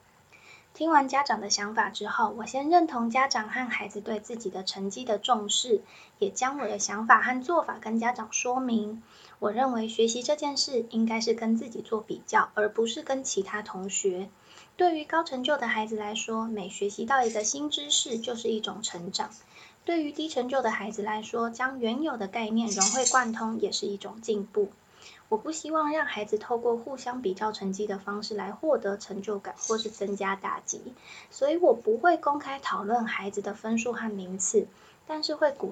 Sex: female